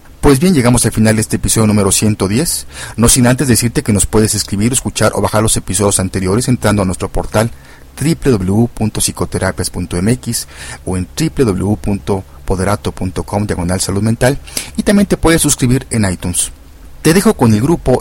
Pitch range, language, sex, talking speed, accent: 95-125 Hz, Spanish, male, 150 wpm, Mexican